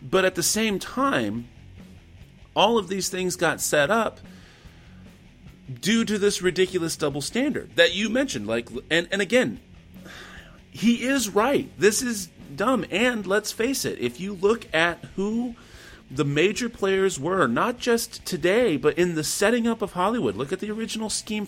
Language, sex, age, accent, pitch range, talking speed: English, male, 30-49, American, 130-215 Hz, 165 wpm